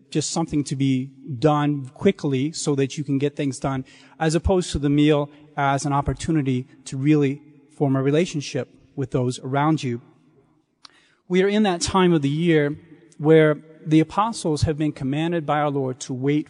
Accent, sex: American, male